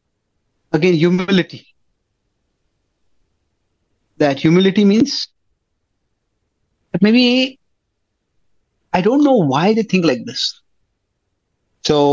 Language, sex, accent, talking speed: English, male, Indian, 80 wpm